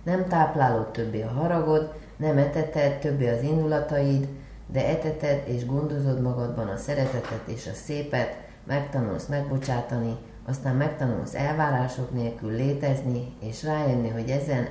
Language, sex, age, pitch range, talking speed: Hungarian, female, 30-49, 115-145 Hz, 125 wpm